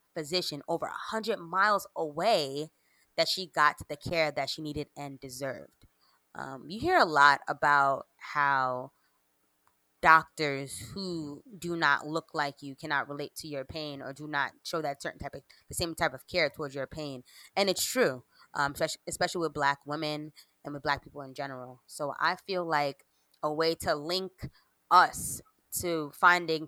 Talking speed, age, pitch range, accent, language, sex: 170 wpm, 20-39, 145-185 Hz, American, English, female